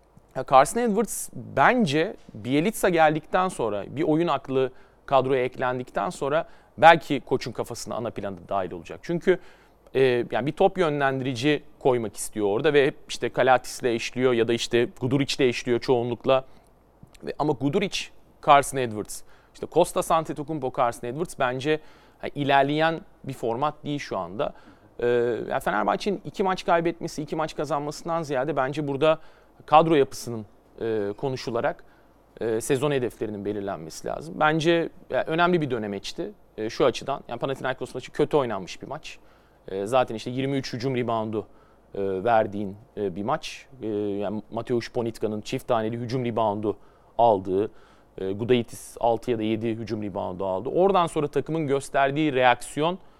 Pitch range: 115-155 Hz